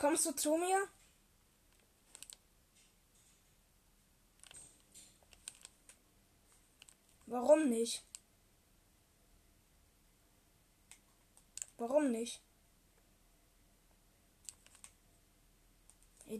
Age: 10-29